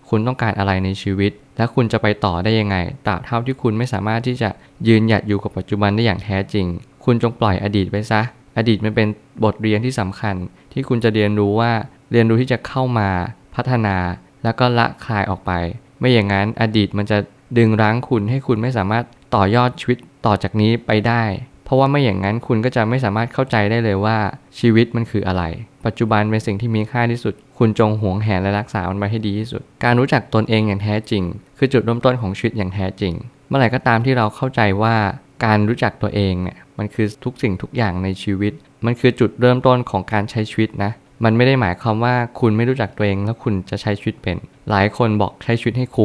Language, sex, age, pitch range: Thai, male, 20-39, 100-120 Hz